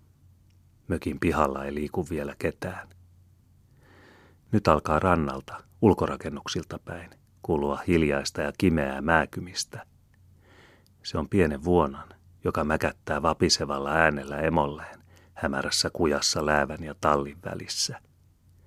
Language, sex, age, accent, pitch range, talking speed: Finnish, male, 40-59, native, 75-90 Hz, 100 wpm